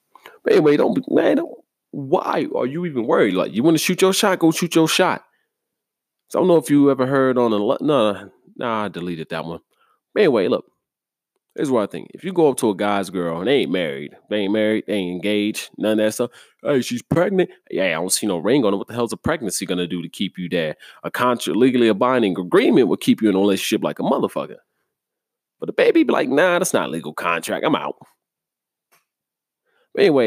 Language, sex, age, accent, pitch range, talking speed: English, male, 30-49, American, 90-125 Hz, 235 wpm